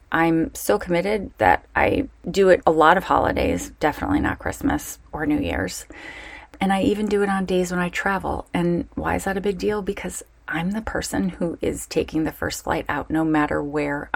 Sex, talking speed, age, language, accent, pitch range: female, 205 wpm, 30-49, English, American, 155-200 Hz